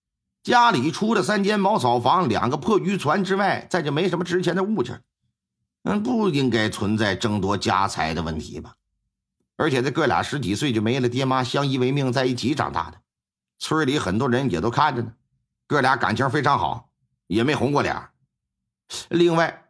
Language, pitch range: Chinese, 100-150 Hz